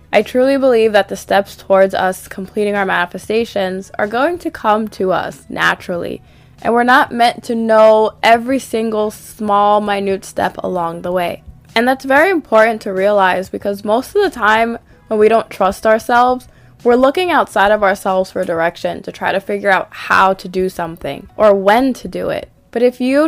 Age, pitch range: 20-39, 190-235 Hz